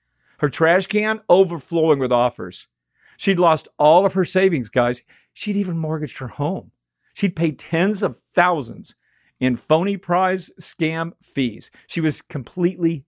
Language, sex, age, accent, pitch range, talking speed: English, male, 50-69, American, 135-195 Hz, 140 wpm